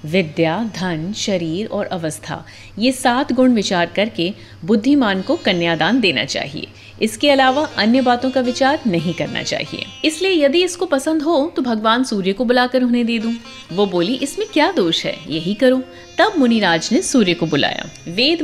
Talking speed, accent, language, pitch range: 170 wpm, native, Hindi, 185-265 Hz